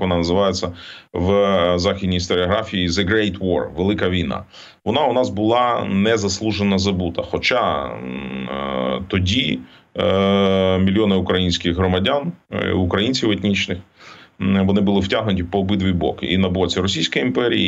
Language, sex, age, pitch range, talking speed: Ukrainian, male, 30-49, 90-105 Hz, 115 wpm